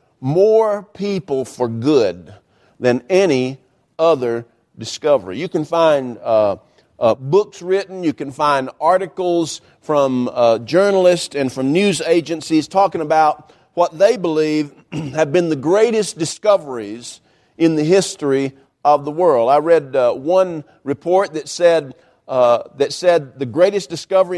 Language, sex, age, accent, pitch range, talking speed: English, male, 50-69, American, 145-195 Hz, 135 wpm